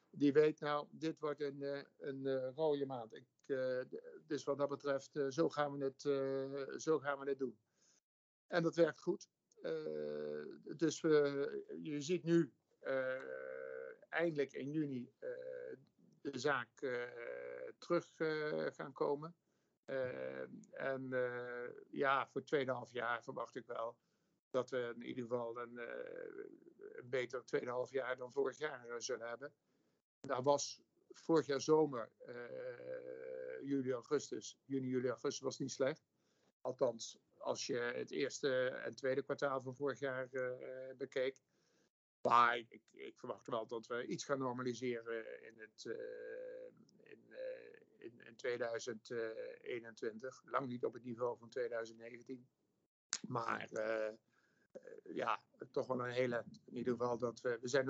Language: Dutch